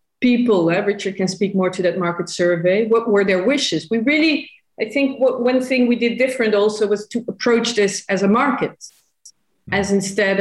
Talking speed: 195 wpm